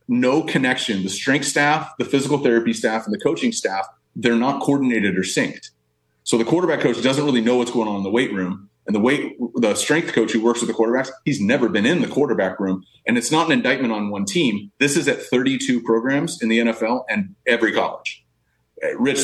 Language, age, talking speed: English, 30-49, 220 wpm